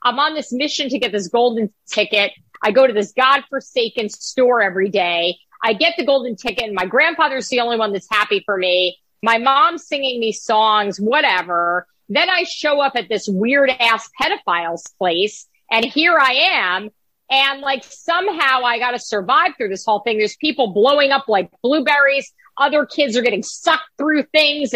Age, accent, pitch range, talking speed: 50-69, American, 205-300 Hz, 185 wpm